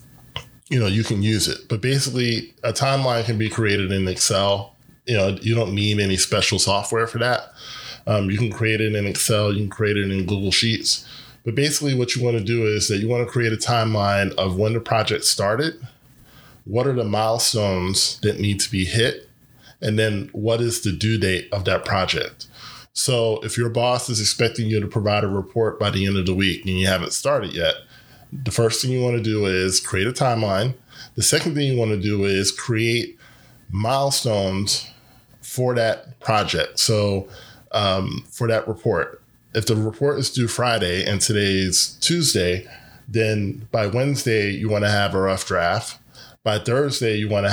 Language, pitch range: English, 100-120 Hz